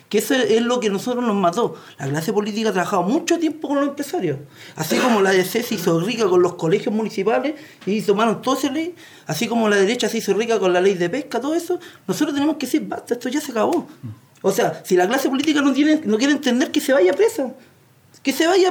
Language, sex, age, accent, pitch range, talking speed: Spanish, male, 40-59, Spanish, 190-305 Hz, 245 wpm